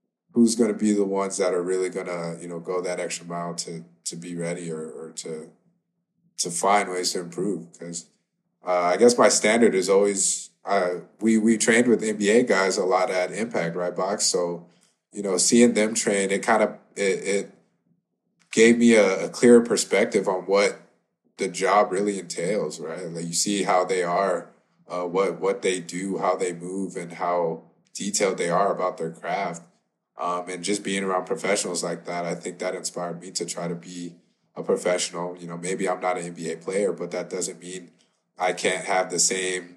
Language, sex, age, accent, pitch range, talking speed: Filipino, male, 20-39, American, 85-100 Hz, 200 wpm